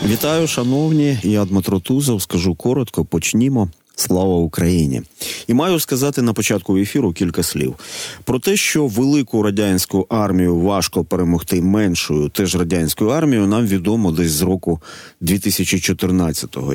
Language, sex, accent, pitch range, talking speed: Ukrainian, male, native, 90-125 Hz, 130 wpm